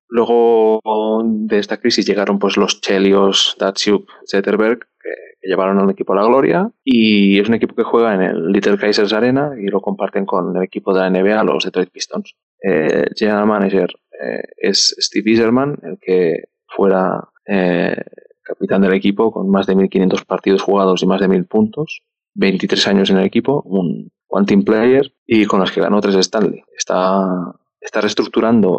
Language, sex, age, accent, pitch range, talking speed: Spanish, male, 20-39, Spanish, 95-115 Hz, 175 wpm